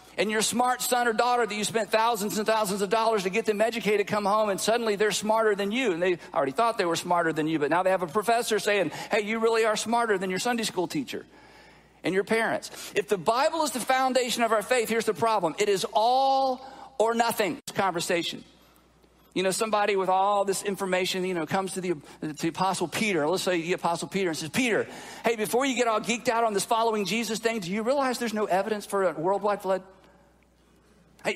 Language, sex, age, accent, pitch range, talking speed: English, male, 50-69, American, 205-250 Hz, 225 wpm